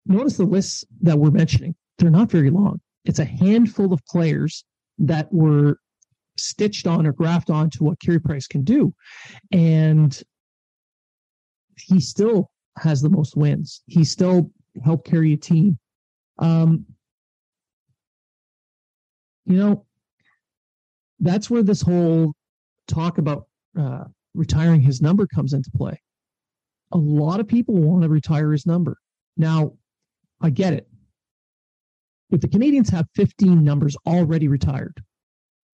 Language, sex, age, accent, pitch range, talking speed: English, male, 40-59, American, 150-175 Hz, 130 wpm